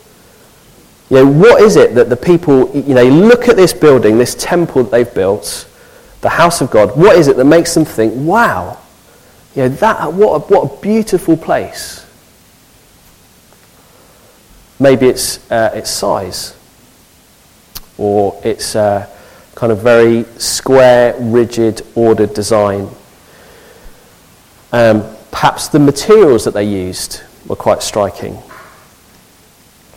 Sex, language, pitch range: male, English, 115-155 Hz